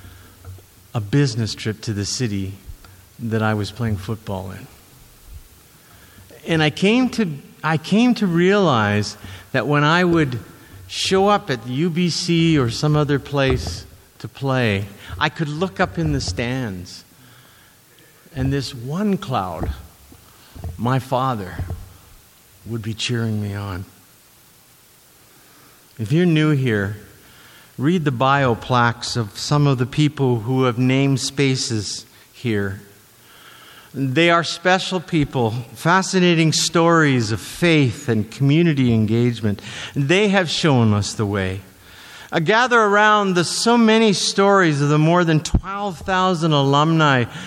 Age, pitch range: 50-69, 105-165 Hz